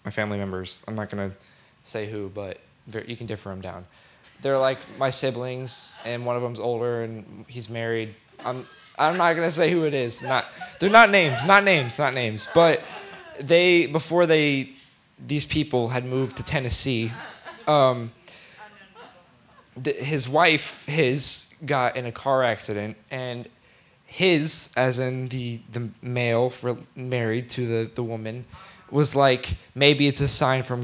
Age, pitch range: 20-39, 115-140 Hz